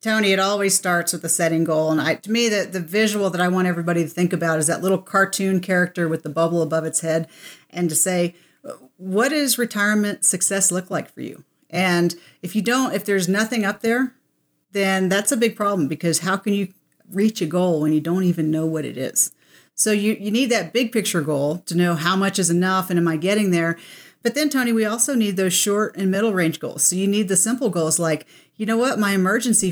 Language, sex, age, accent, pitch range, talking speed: English, female, 40-59, American, 170-205 Hz, 235 wpm